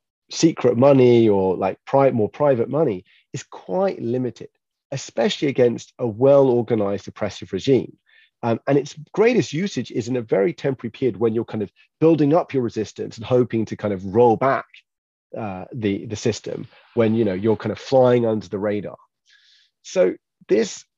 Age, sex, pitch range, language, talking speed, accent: 30-49, male, 105-135 Hz, English, 170 wpm, British